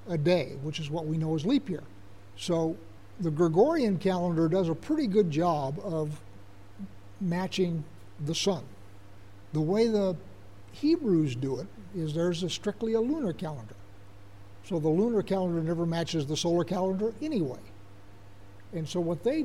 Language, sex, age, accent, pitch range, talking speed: English, male, 60-79, American, 125-185 Hz, 155 wpm